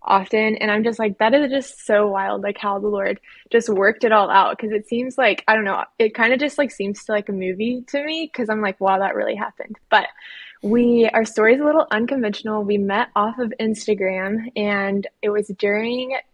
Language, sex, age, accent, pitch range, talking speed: English, female, 20-39, American, 205-235 Hz, 230 wpm